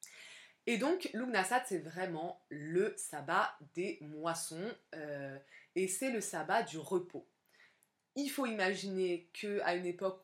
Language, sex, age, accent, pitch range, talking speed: French, female, 20-39, French, 160-210 Hz, 130 wpm